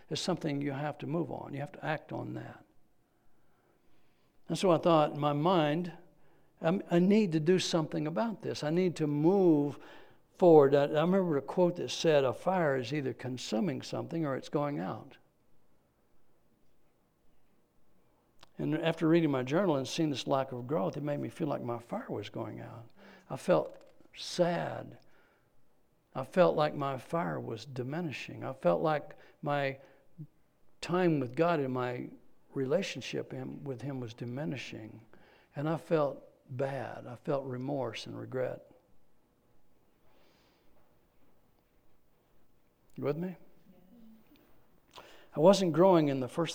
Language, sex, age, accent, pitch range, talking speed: English, male, 60-79, American, 135-170 Hz, 145 wpm